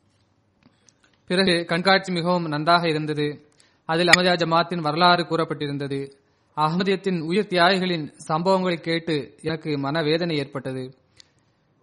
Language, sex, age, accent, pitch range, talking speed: Tamil, male, 20-39, native, 150-180 Hz, 90 wpm